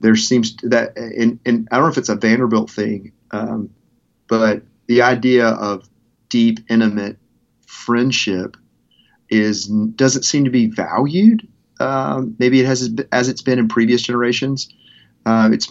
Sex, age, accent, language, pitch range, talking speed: male, 40-59, American, English, 110-125 Hz, 155 wpm